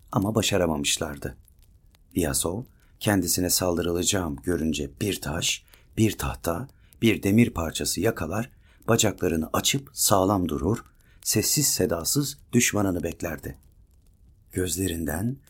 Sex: male